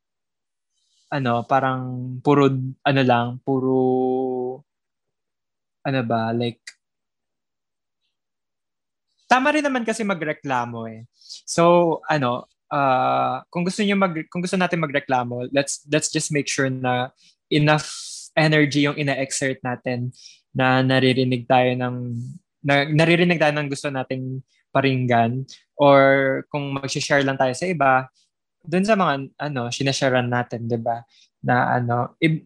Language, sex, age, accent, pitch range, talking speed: Filipino, male, 20-39, native, 125-160 Hz, 120 wpm